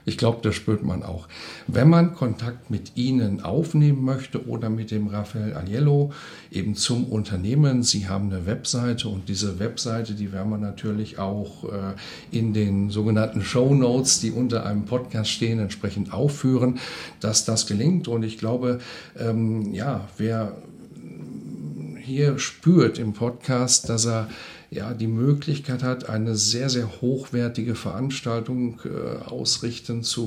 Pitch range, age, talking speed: 105-130 Hz, 50-69, 145 wpm